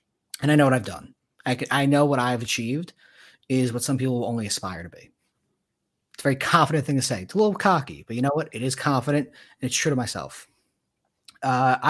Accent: American